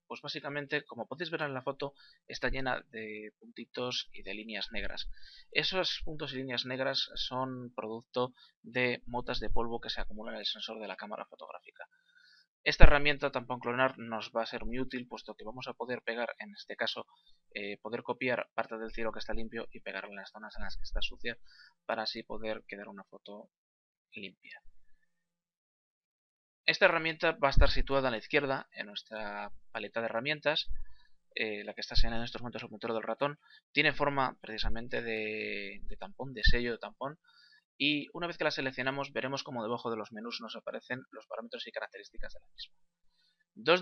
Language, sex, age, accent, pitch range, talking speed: Spanish, male, 20-39, Spanish, 115-145 Hz, 190 wpm